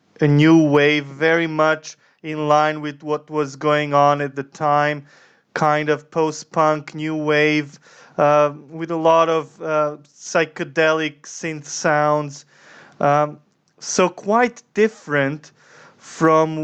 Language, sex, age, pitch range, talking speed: English, male, 20-39, 155-180 Hz, 125 wpm